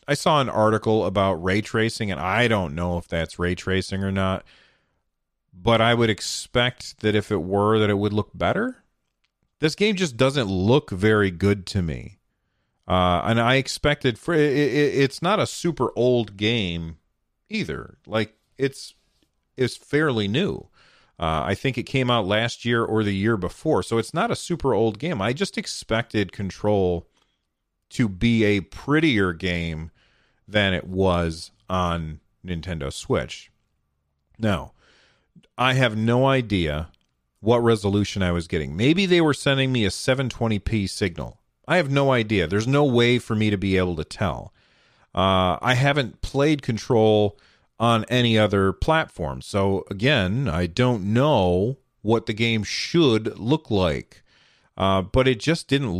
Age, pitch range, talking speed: 40-59, 95-125 Hz, 155 wpm